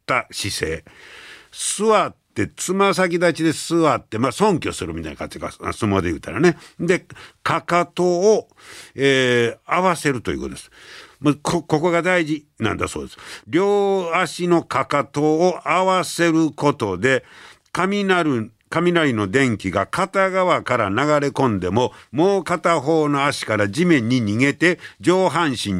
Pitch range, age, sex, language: 110-170 Hz, 60-79, male, Japanese